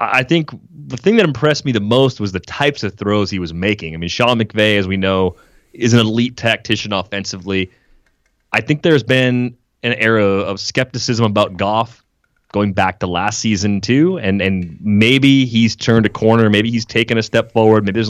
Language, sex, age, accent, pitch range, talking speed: English, male, 30-49, American, 100-125 Hz, 200 wpm